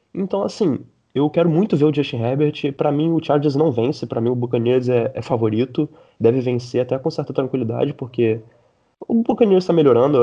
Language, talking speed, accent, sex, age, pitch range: Portuguese, 195 wpm, Brazilian, male, 20-39, 120-155 Hz